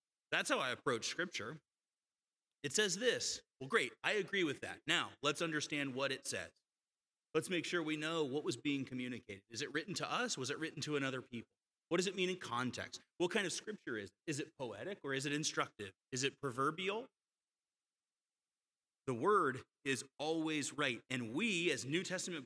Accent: American